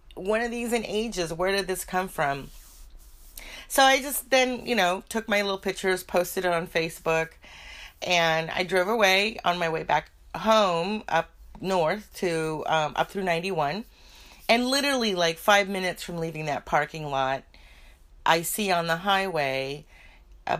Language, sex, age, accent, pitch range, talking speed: English, female, 30-49, American, 150-195 Hz, 165 wpm